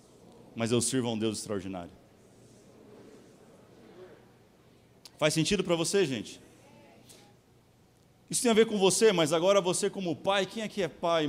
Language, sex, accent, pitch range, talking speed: Portuguese, male, Brazilian, 110-170 Hz, 150 wpm